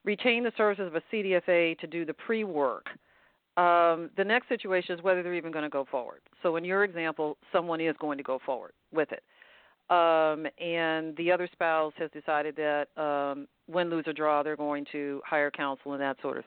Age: 50-69